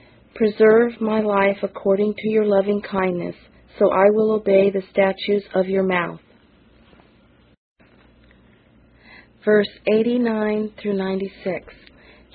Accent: American